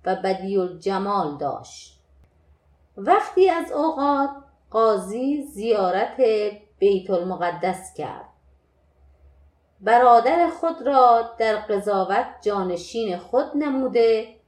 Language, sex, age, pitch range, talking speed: Persian, female, 30-49, 185-255 Hz, 85 wpm